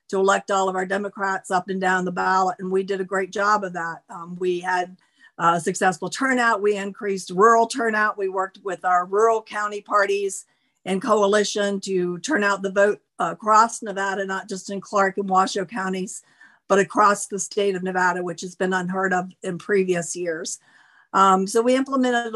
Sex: female